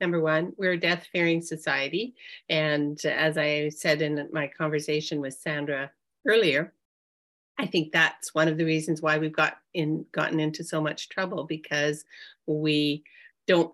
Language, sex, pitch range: English, female, 155-190 Hz